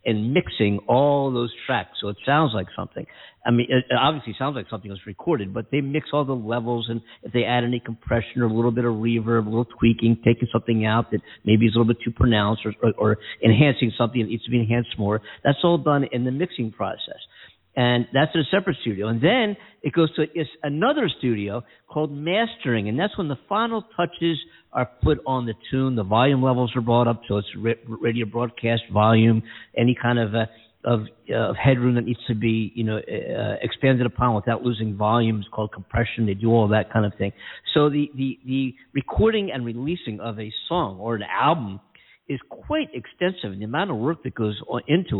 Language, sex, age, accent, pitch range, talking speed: English, male, 50-69, American, 110-140 Hz, 205 wpm